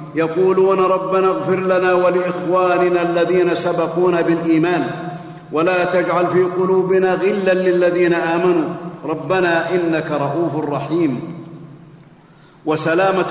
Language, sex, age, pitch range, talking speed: Arabic, male, 50-69, 165-185 Hz, 90 wpm